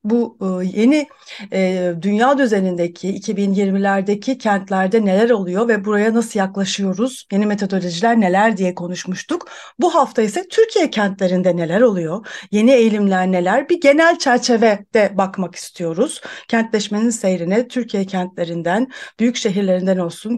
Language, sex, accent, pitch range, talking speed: Turkish, female, native, 190-240 Hz, 120 wpm